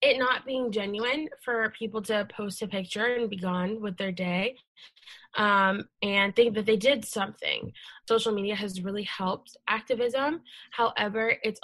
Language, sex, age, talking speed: English, female, 10-29, 160 wpm